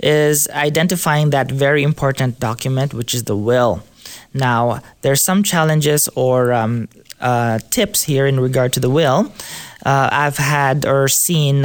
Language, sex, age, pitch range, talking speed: English, male, 20-39, 130-175 Hz, 150 wpm